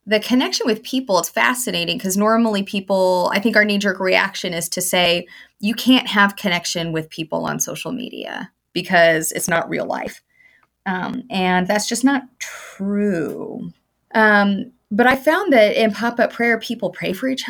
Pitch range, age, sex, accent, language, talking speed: 180-225 Hz, 30-49, female, American, English, 170 wpm